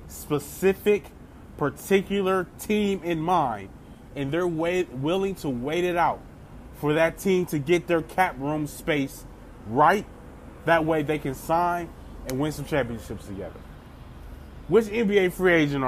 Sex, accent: male, American